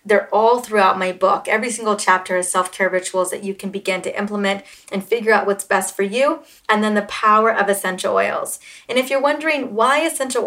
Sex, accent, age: female, American, 30-49